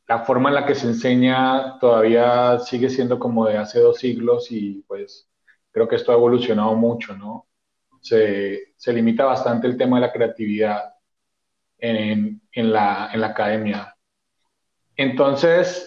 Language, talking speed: Spanish, 150 wpm